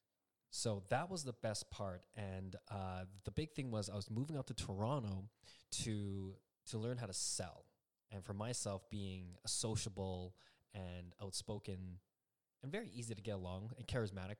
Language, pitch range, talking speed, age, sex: English, 95-120 Hz, 165 wpm, 20-39, male